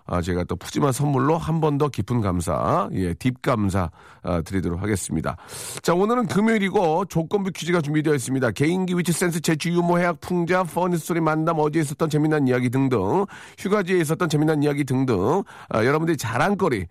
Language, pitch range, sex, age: Korean, 125-175 Hz, male, 40-59